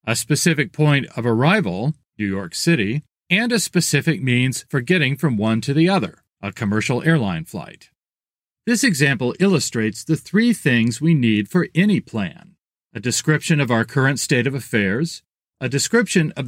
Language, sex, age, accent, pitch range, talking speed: English, male, 40-59, American, 125-175 Hz, 165 wpm